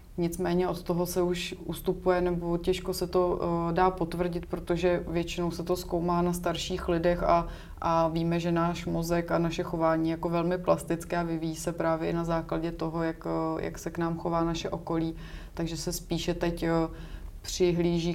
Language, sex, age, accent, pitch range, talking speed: Czech, female, 30-49, native, 160-175 Hz, 180 wpm